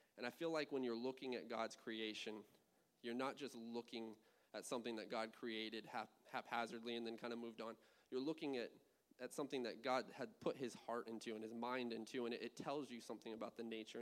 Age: 20-39